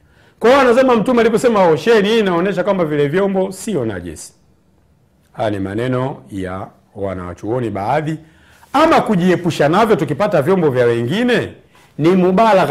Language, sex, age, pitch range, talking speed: Swahili, male, 50-69, 105-170 Hz, 125 wpm